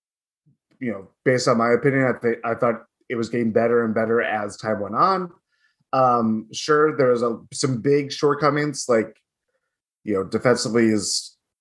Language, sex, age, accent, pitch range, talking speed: English, male, 20-39, American, 115-140 Hz, 160 wpm